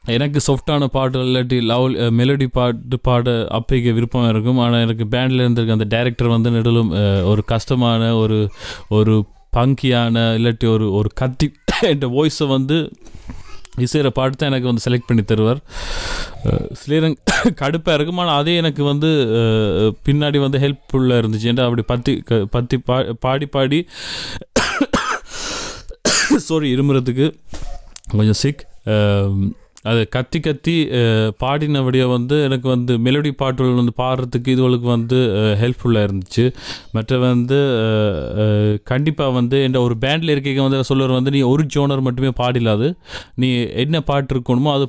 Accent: native